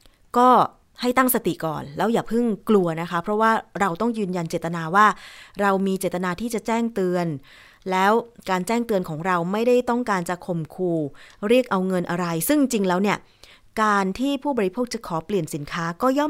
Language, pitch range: Thai, 180-230 Hz